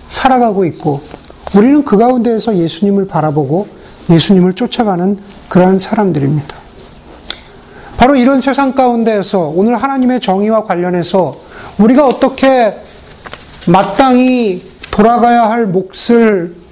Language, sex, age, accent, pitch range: Korean, male, 40-59, native, 175-230 Hz